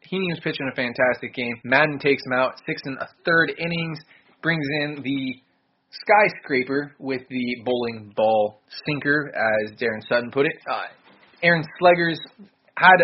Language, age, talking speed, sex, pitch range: English, 20-39, 150 wpm, male, 125-150 Hz